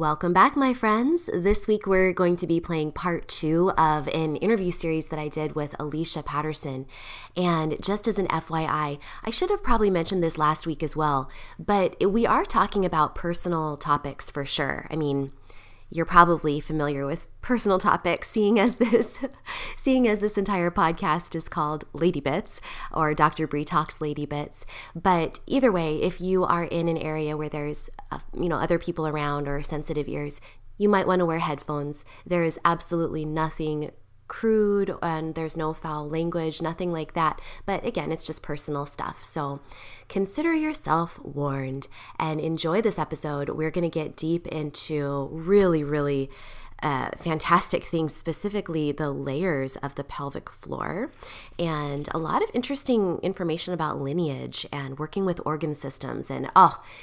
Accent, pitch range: American, 150-185 Hz